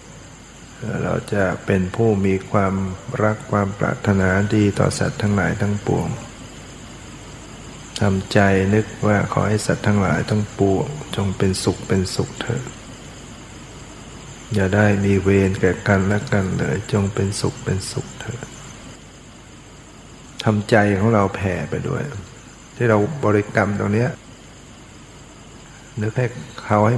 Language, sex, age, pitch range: Thai, male, 60-79, 100-115 Hz